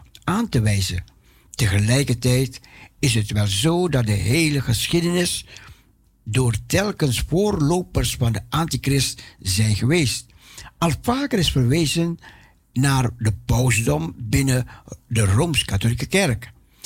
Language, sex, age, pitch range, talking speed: Dutch, male, 60-79, 110-160 Hz, 110 wpm